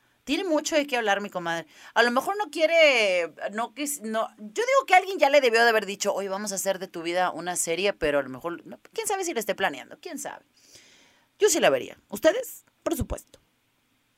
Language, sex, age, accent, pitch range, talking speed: Spanish, female, 30-49, Mexican, 165-255 Hz, 230 wpm